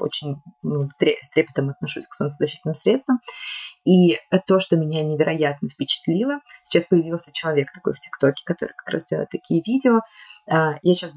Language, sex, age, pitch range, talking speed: Russian, female, 20-39, 150-185 Hz, 150 wpm